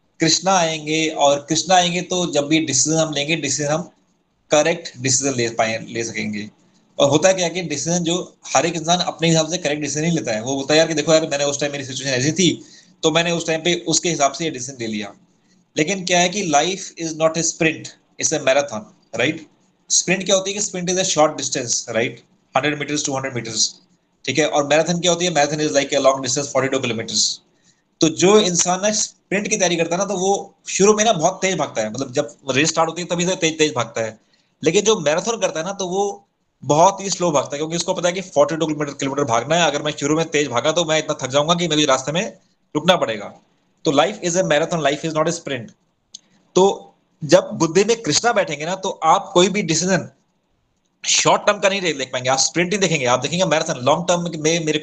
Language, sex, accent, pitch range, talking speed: Hindi, male, native, 145-180 Hz, 230 wpm